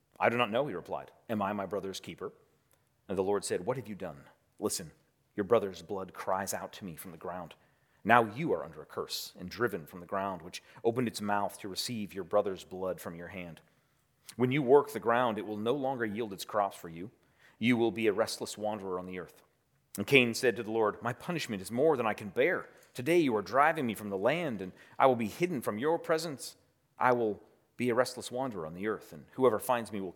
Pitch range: 95-125 Hz